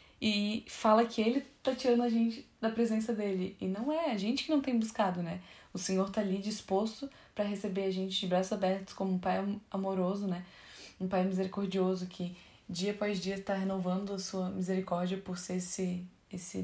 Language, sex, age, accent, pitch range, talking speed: Portuguese, female, 10-29, Brazilian, 185-210 Hz, 195 wpm